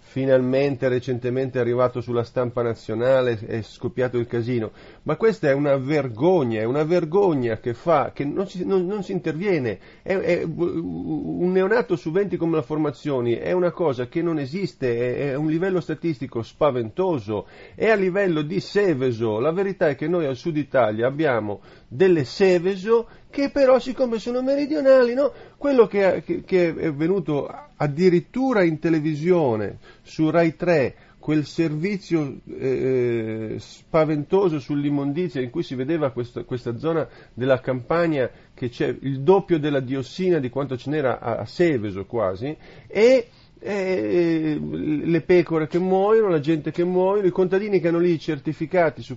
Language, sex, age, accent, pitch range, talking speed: Italian, male, 40-59, native, 130-195 Hz, 155 wpm